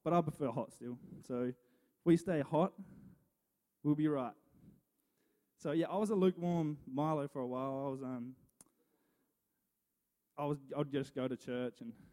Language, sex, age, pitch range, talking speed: English, male, 20-39, 120-145 Hz, 180 wpm